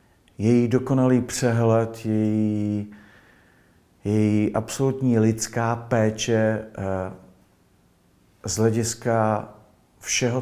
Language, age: Czech, 50-69